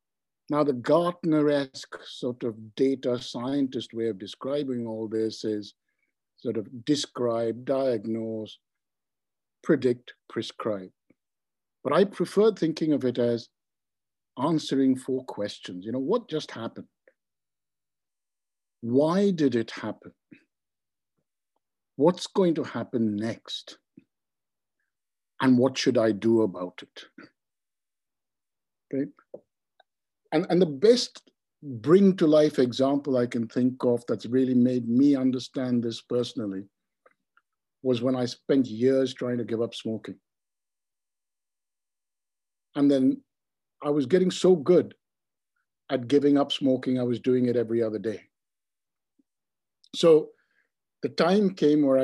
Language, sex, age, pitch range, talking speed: English, male, 60-79, 115-145 Hz, 120 wpm